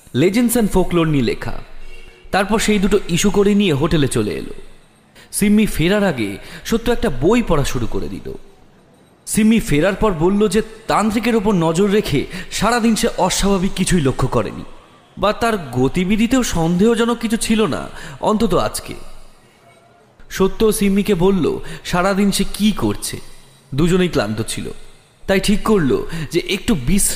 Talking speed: 110 wpm